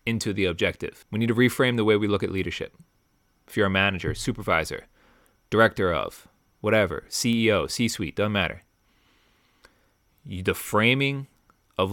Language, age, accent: English, 30-49, American